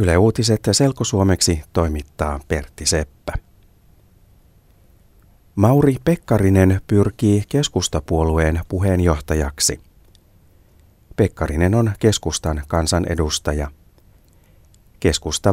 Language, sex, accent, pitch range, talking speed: Finnish, male, native, 85-100 Hz, 60 wpm